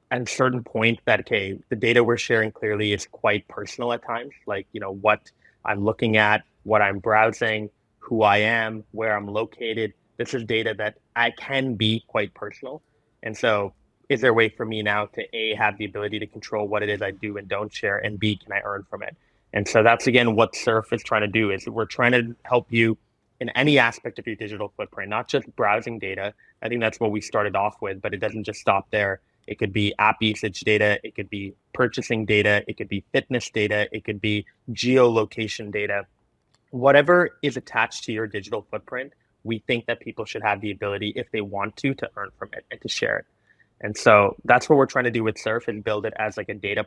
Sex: male